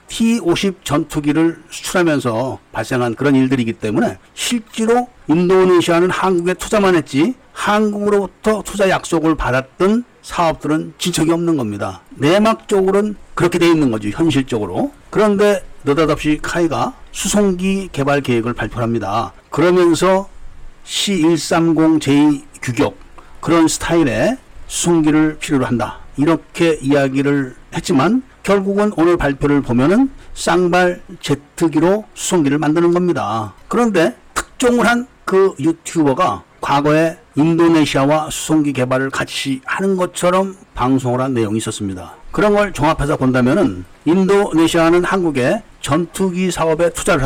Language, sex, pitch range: Korean, male, 140-185 Hz